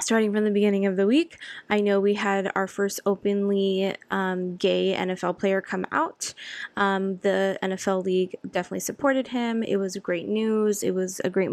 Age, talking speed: 10-29, 180 wpm